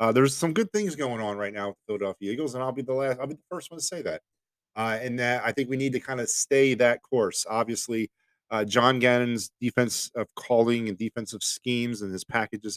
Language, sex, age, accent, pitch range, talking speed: English, male, 30-49, American, 105-130 Hz, 240 wpm